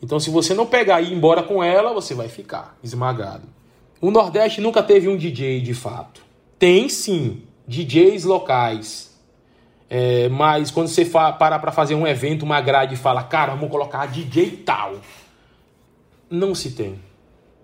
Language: Portuguese